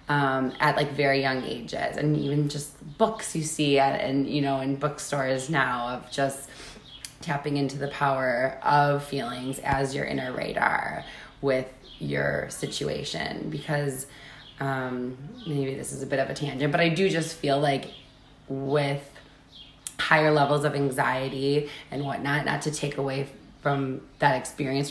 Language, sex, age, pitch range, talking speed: English, female, 20-39, 135-150 Hz, 150 wpm